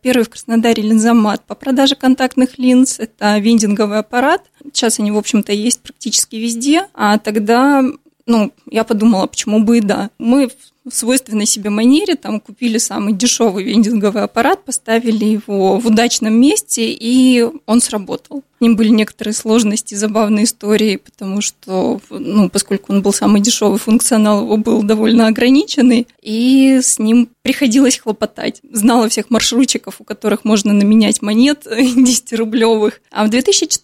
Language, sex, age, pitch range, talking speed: Russian, female, 20-39, 215-255 Hz, 145 wpm